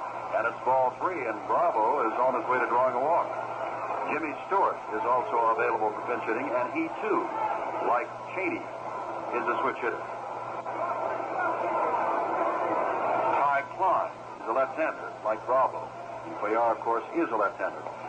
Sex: male